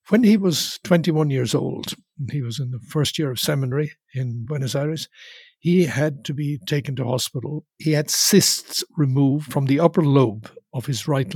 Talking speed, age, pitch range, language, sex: 185 wpm, 60-79, 135-170 Hz, English, male